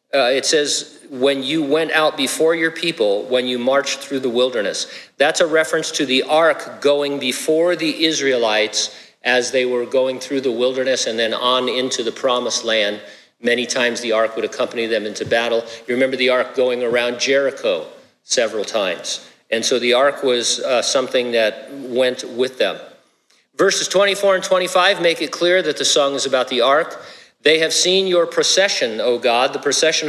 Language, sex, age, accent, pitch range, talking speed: English, male, 50-69, American, 125-160 Hz, 185 wpm